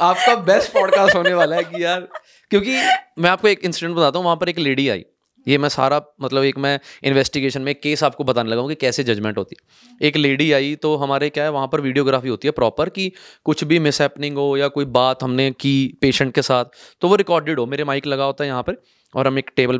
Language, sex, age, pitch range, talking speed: Punjabi, male, 20-39, 130-160 Hz, 240 wpm